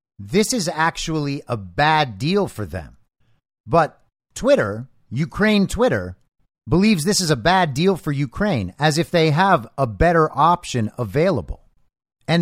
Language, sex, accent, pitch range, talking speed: English, male, American, 115-165 Hz, 140 wpm